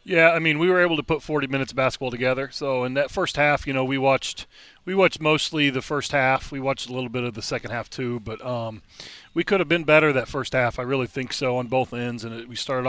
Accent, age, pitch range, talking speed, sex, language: American, 30-49, 120-140 Hz, 265 wpm, male, English